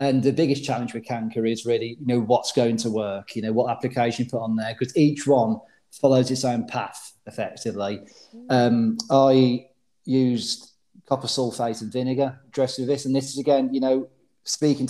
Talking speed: 190 wpm